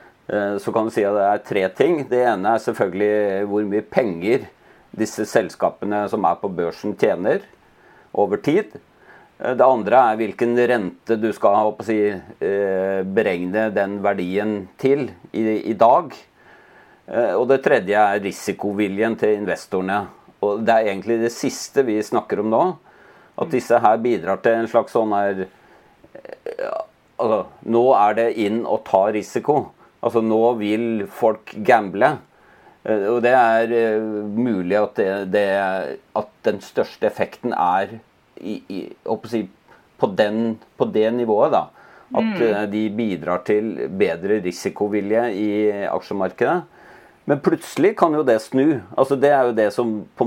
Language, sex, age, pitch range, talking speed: English, male, 30-49, 100-115 Hz, 145 wpm